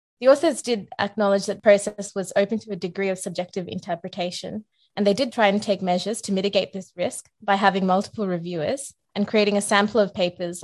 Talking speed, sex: 195 wpm, female